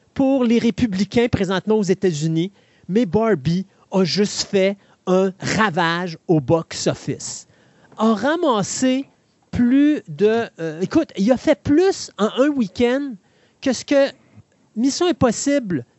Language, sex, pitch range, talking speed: French, male, 200-270 Hz, 125 wpm